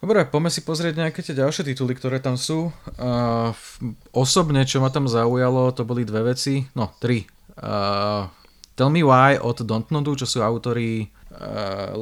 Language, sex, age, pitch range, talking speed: Slovak, male, 20-39, 120-140 Hz, 170 wpm